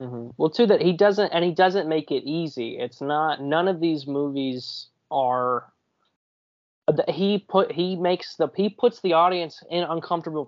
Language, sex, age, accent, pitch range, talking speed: English, male, 20-39, American, 135-170 Hz, 165 wpm